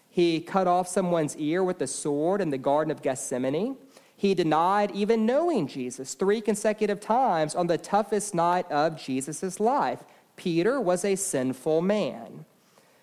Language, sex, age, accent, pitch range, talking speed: English, male, 40-59, American, 140-200 Hz, 150 wpm